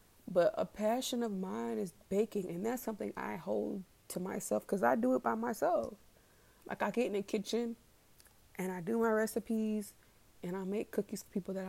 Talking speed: 195 wpm